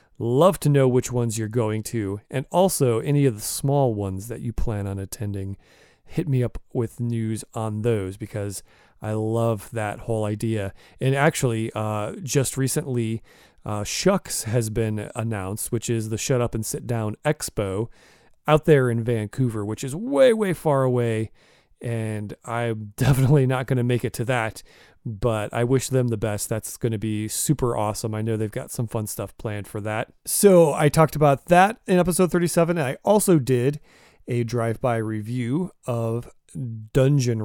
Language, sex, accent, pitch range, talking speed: English, male, American, 110-140 Hz, 175 wpm